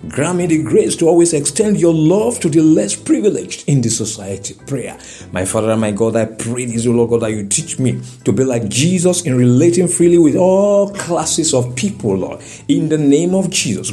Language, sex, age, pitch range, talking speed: English, male, 60-79, 135-195 Hz, 205 wpm